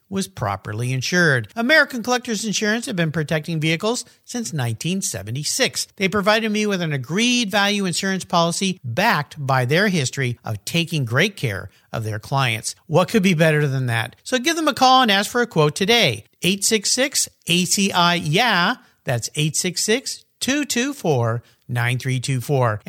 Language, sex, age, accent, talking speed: English, male, 50-69, American, 140 wpm